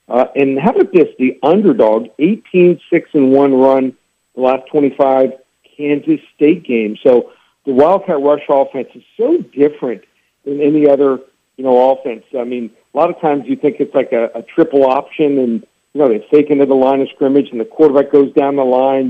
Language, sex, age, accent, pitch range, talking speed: English, male, 50-69, American, 135-155 Hz, 190 wpm